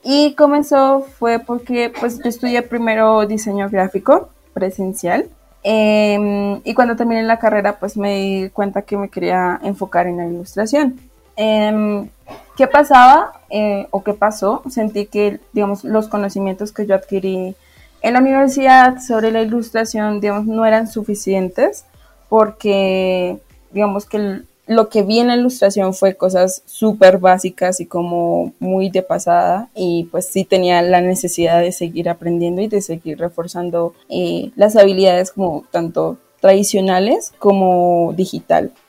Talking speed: 145 wpm